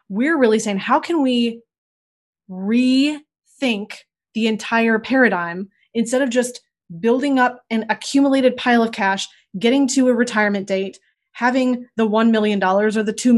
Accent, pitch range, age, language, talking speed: American, 205-250 Hz, 20-39, English, 145 wpm